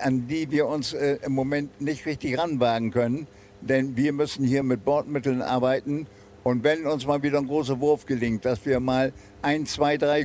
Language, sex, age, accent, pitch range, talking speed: German, male, 60-79, German, 125-150 Hz, 195 wpm